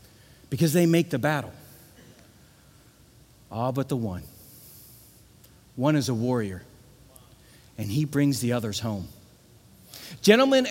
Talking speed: 110 wpm